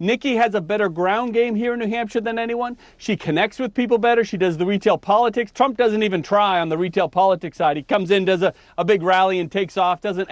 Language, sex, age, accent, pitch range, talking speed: English, male, 40-59, American, 195-235 Hz, 250 wpm